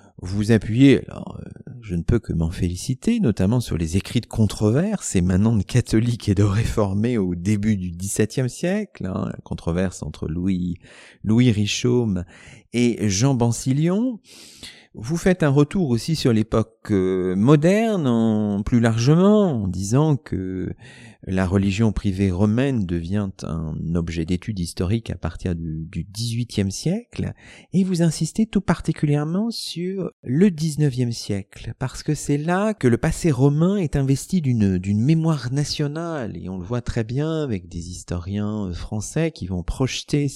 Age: 50-69